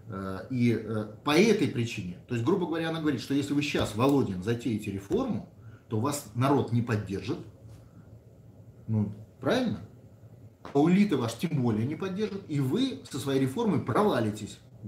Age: 30-49